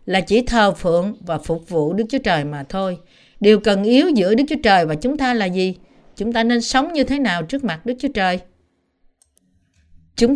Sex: female